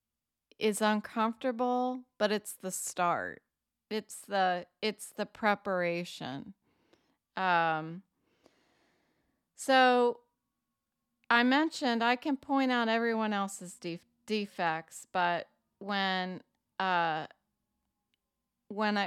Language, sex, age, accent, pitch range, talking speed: English, female, 30-49, American, 185-235 Hz, 80 wpm